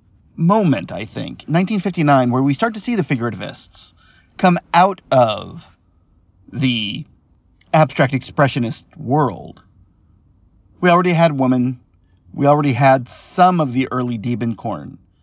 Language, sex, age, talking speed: English, male, 40-59, 120 wpm